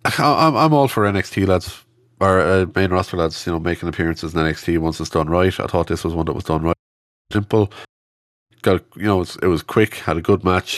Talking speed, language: 225 wpm, English